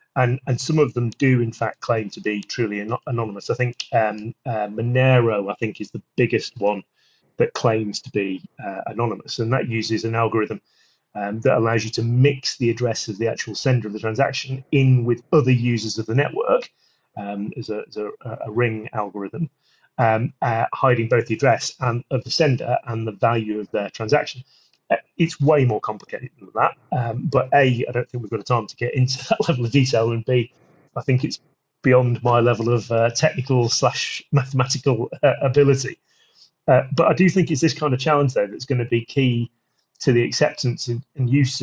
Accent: British